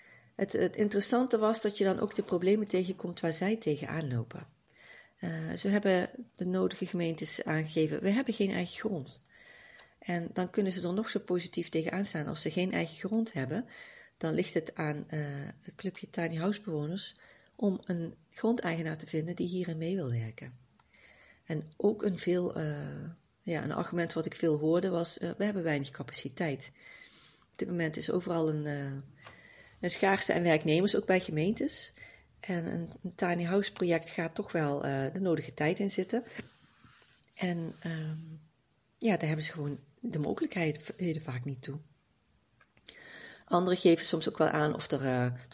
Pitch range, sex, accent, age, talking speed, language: 155-195 Hz, female, Dutch, 40-59, 165 wpm, Dutch